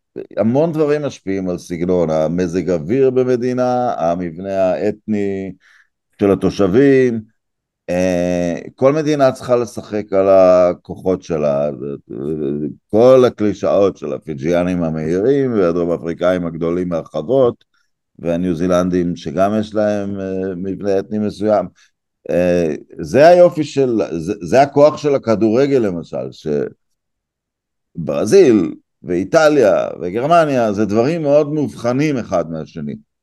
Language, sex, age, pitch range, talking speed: Hebrew, male, 50-69, 90-125 Hz, 100 wpm